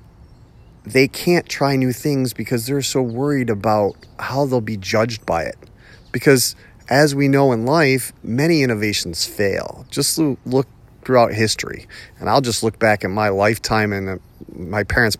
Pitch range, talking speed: 105-125 Hz, 160 wpm